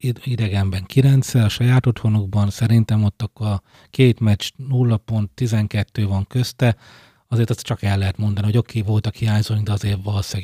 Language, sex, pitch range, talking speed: Hungarian, male, 100-120 Hz, 165 wpm